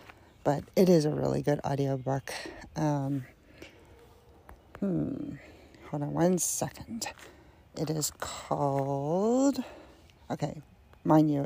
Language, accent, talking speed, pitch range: English, American, 100 wpm, 140-175 Hz